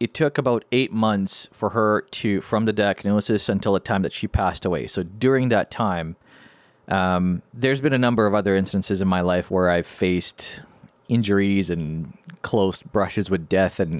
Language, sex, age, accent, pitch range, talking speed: English, male, 30-49, American, 95-110 Hz, 185 wpm